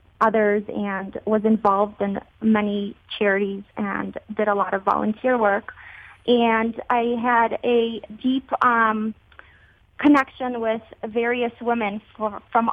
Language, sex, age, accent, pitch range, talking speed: English, female, 30-49, American, 200-230 Hz, 120 wpm